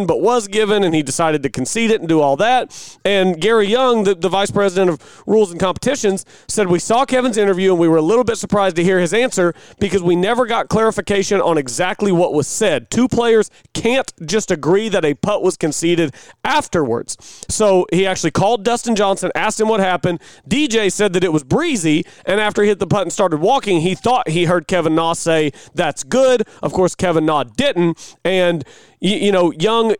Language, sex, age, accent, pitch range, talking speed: English, male, 40-59, American, 175-215 Hz, 210 wpm